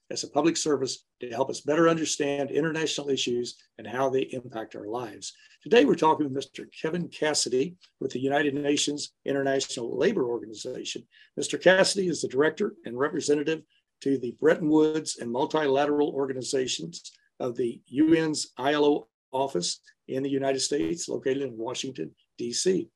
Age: 60-79